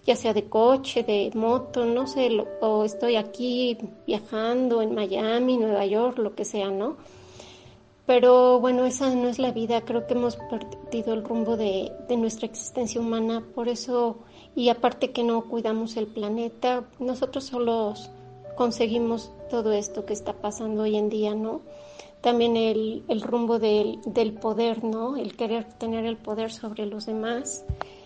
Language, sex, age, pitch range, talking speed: Spanish, female, 30-49, 215-240 Hz, 160 wpm